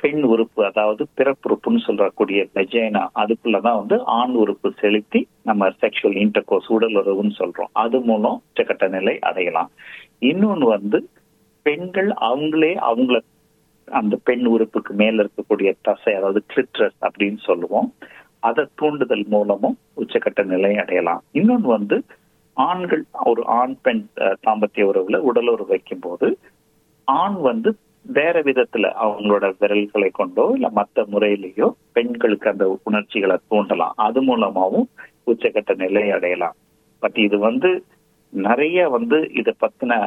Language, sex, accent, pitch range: Tamil, male, native, 105-125 Hz